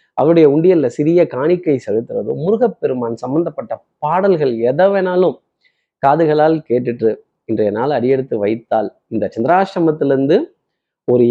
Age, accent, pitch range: 30-49, native, 140-210 Hz